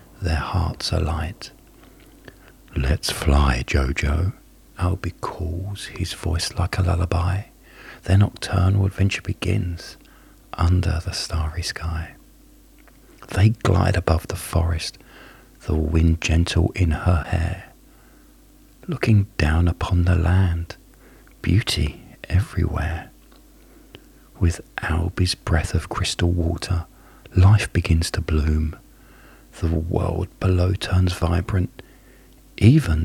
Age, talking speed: 40-59, 100 wpm